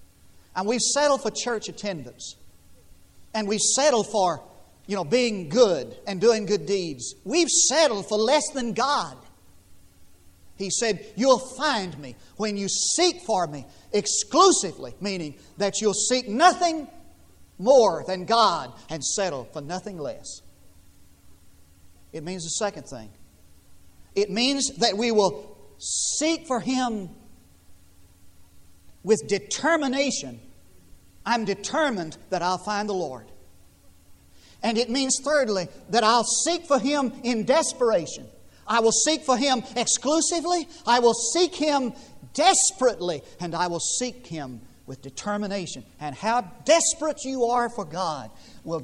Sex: male